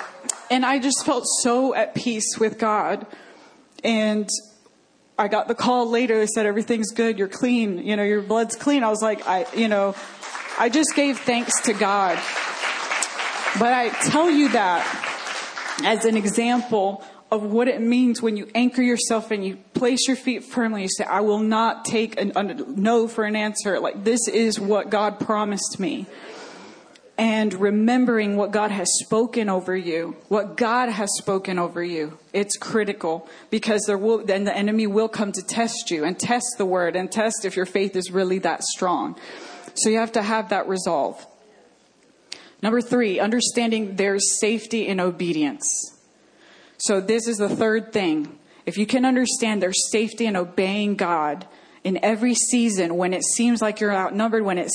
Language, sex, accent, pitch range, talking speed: English, female, American, 200-235 Hz, 170 wpm